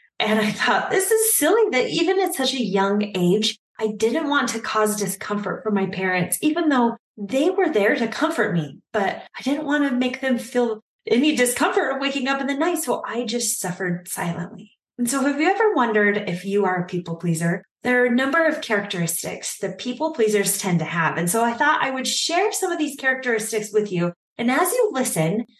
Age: 20-39